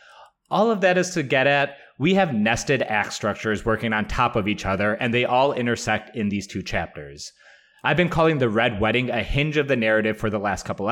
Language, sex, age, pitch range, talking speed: English, male, 30-49, 110-140 Hz, 225 wpm